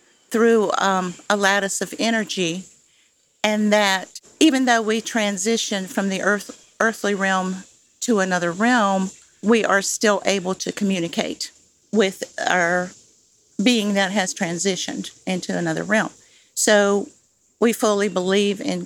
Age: 50-69